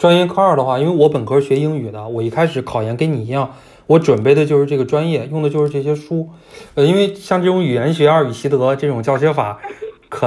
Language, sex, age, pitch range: Chinese, male, 20-39, 125-155 Hz